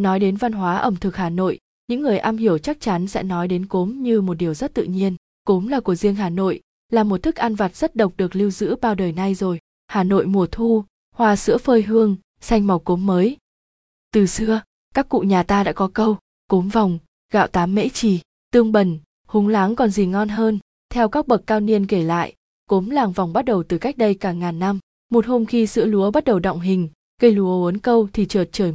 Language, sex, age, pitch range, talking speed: Vietnamese, female, 20-39, 185-225 Hz, 235 wpm